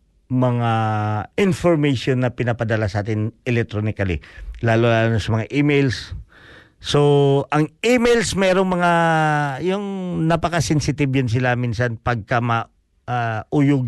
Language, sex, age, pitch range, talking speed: Filipino, male, 50-69, 110-150 Hz, 110 wpm